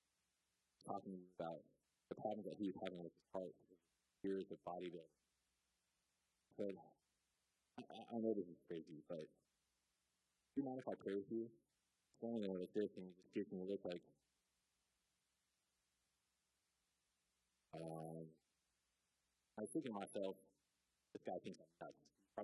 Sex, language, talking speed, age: male, English, 140 wpm, 50-69